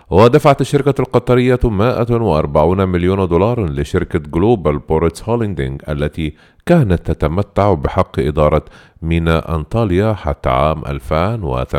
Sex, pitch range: male, 80-120 Hz